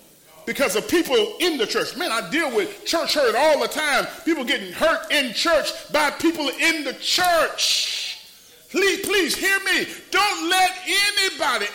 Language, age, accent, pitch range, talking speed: English, 40-59, American, 285-370 Hz, 165 wpm